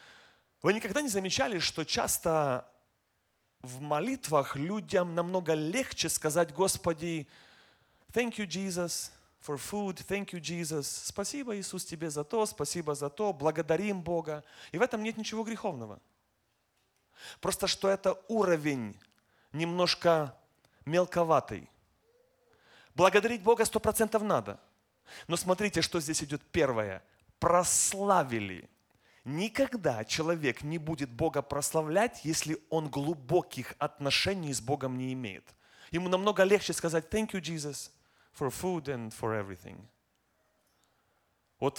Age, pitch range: 30-49, 130-185 Hz